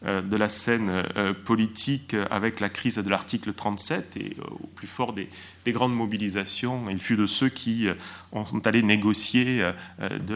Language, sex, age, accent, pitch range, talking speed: French, male, 30-49, French, 95-115 Hz, 150 wpm